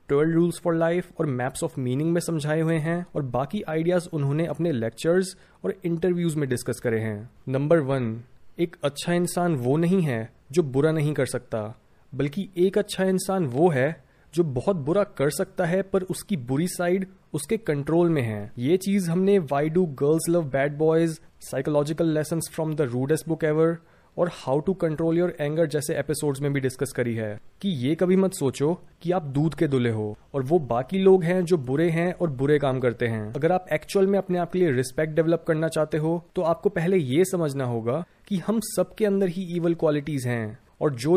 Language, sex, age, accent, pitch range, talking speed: Hindi, male, 30-49, native, 140-180 Hz, 200 wpm